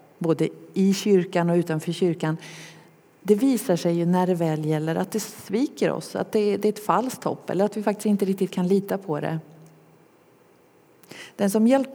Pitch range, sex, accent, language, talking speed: 165-200 Hz, female, native, Swedish, 185 wpm